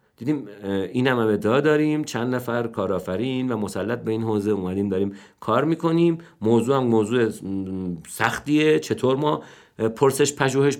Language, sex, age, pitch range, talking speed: Persian, male, 50-69, 105-140 Hz, 135 wpm